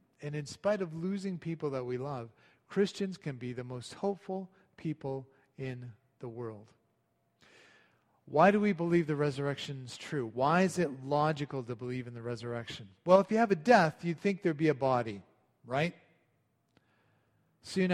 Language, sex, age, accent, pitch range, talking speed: English, male, 40-59, American, 125-170 Hz, 165 wpm